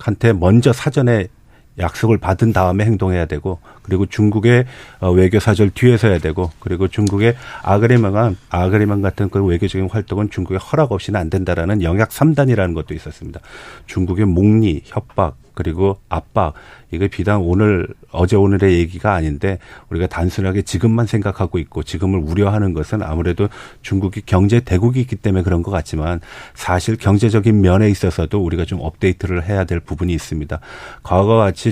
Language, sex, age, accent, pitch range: Korean, male, 40-59, native, 90-110 Hz